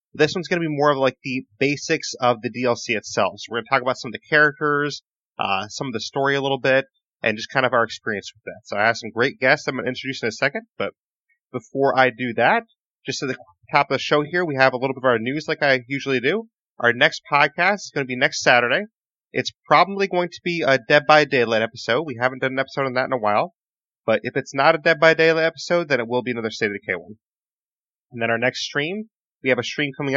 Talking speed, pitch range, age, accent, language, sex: 270 wpm, 115-150 Hz, 30-49, American, English, male